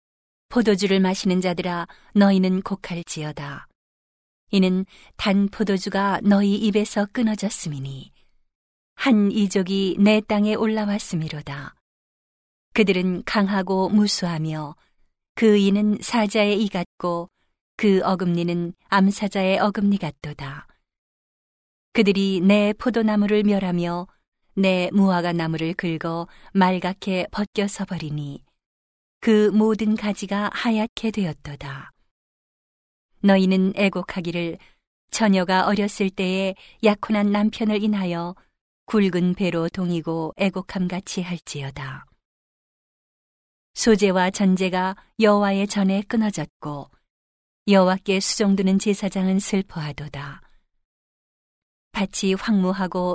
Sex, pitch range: female, 175-205 Hz